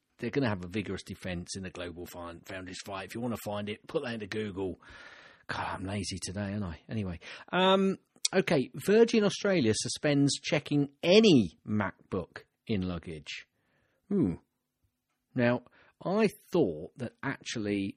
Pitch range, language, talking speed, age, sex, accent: 100-140 Hz, English, 155 wpm, 40-59, male, British